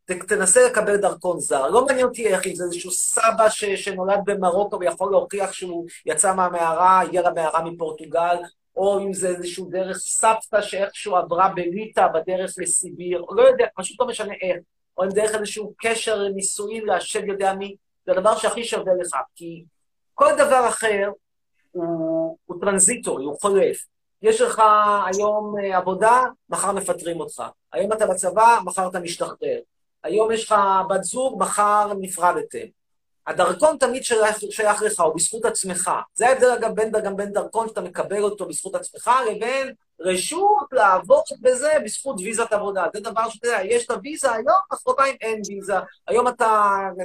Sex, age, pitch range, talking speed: male, 30-49, 185-235 Hz, 160 wpm